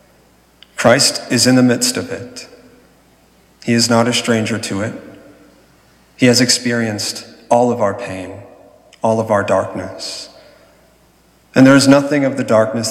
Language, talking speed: English, 150 wpm